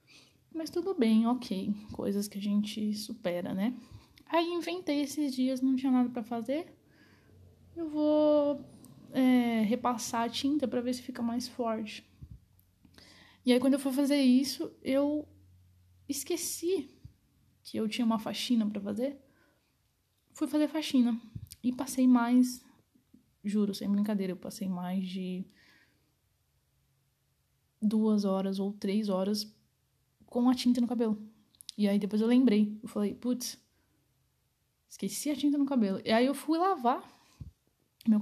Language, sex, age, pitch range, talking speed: Portuguese, female, 10-29, 205-265 Hz, 140 wpm